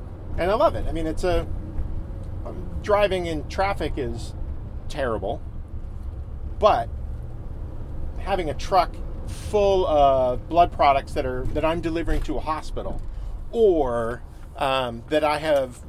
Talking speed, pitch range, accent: 130 wpm, 90-140 Hz, American